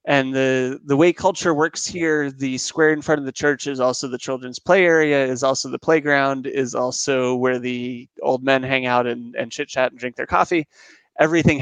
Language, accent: English, American